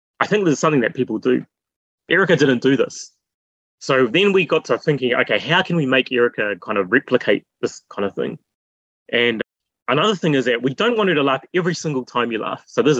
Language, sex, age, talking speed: English, male, 20-39, 220 wpm